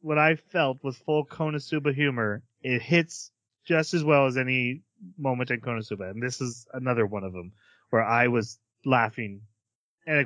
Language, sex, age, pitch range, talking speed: English, male, 30-49, 115-160 Hz, 175 wpm